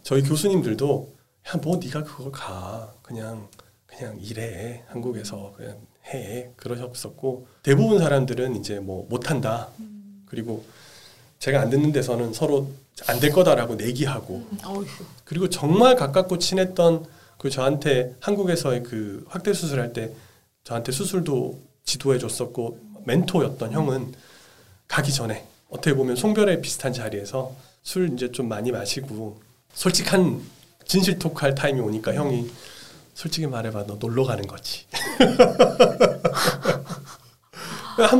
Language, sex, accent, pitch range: Korean, male, native, 120-180 Hz